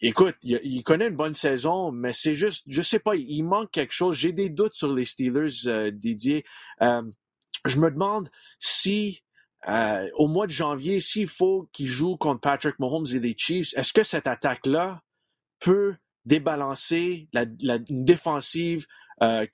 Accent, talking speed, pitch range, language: Canadian, 170 wpm, 135-170 Hz, French